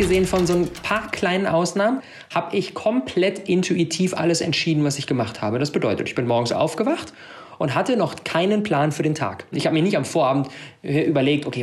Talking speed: 200 wpm